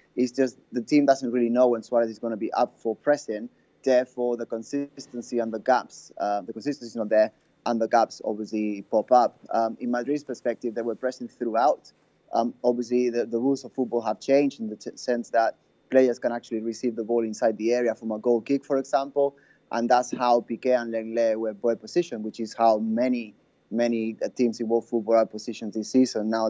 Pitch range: 115-130 Hz